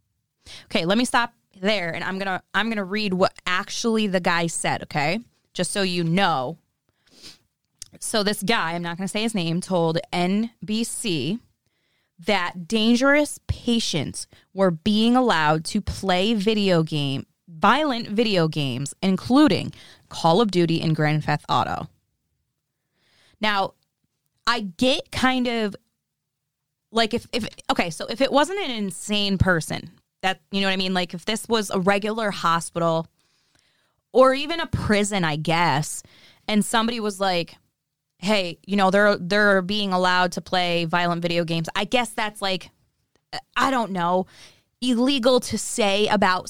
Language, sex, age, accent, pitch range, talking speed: English, female, 20-39, American, 170-220 Hz, 150 wpm